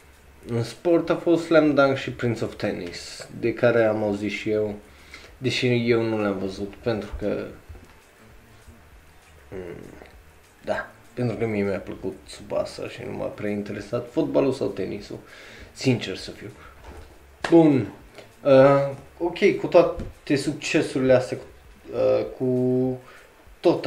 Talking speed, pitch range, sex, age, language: 130 wpm, 100-125 Hz, male, 20-39, Romanian